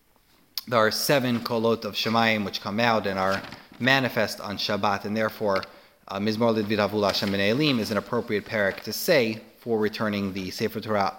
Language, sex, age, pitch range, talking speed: English, male, 30-49, 100-125 Hz, 160 wpm